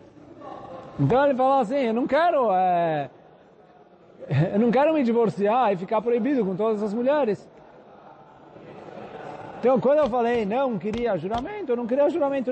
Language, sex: Portuguese, male